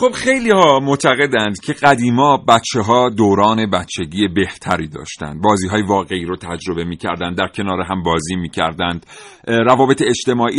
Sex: male